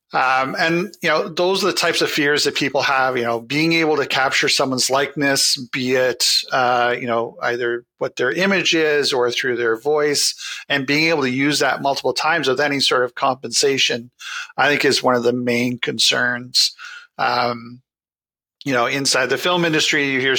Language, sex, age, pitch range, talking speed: English, male, 40-59, 125-150 Hz, 190 wpm